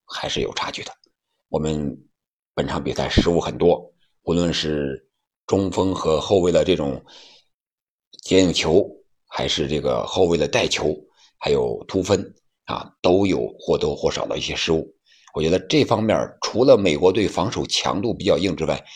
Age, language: 50-69, Chinese